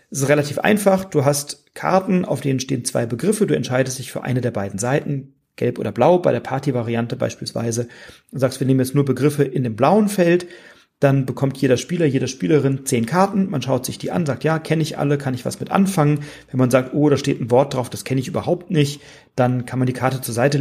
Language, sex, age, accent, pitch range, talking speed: German, male, 40-59, German, 125-150 Hz, 240 wpm